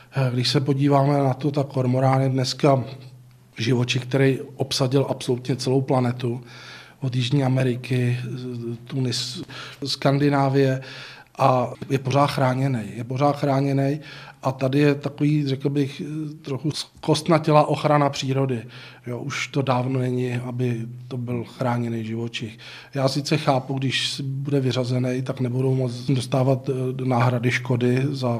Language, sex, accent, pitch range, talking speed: Czech, male, native, 125-140 Hz, 130 wpm